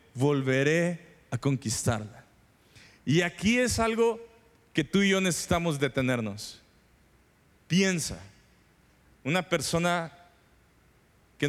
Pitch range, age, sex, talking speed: 110-145 Hz, 40-59, male, 90 wpm